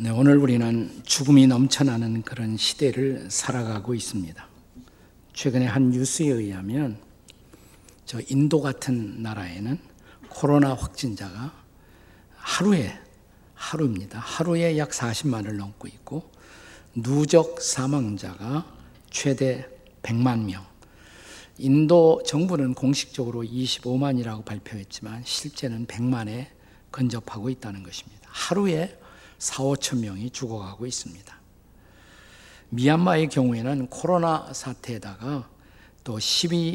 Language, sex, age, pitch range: Korean, male, 50-69, 115-145 Hz